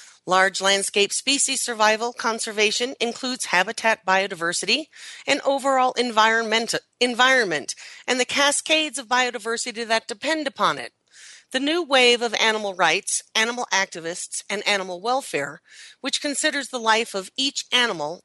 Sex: female